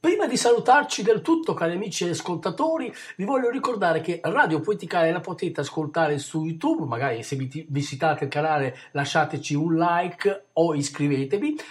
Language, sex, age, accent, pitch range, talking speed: Italian, male, 50-69, native, 135-205 Hz, 160 wpm